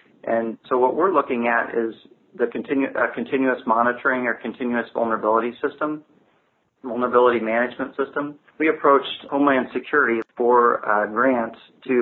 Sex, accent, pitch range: male, American, 115-130 Hz